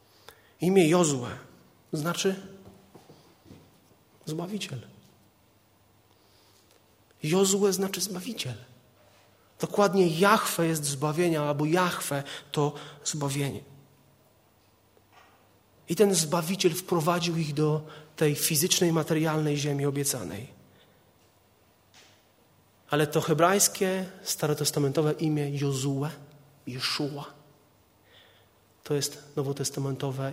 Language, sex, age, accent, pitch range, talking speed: Polish, male, 30-49, native, 110-160 Hz, 70 wpm